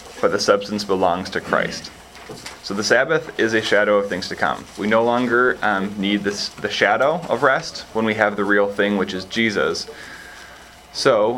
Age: 20-39